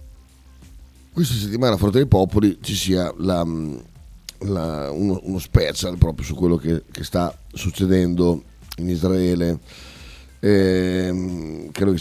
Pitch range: 75-95 Hz